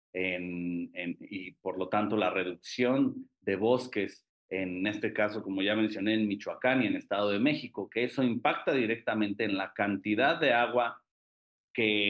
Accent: Mexican